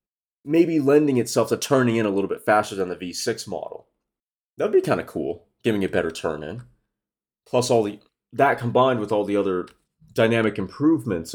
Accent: American